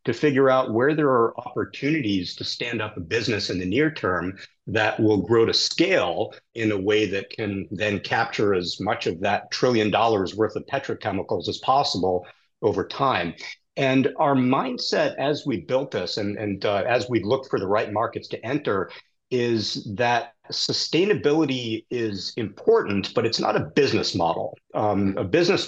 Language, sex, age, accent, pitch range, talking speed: English, male, 50-69, American, 100-130 Hz, 175 wpm